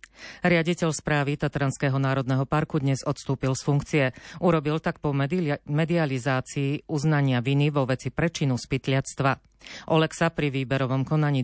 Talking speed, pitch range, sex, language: 125 wpm, 130-150 Hz, female, Slovak